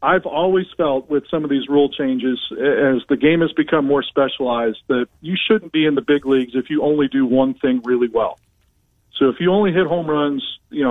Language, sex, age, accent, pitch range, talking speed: English, male, 40-59, American, 130-155 Hz, 220 wpm